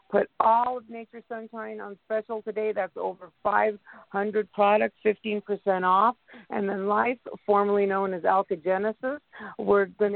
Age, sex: 50-69, female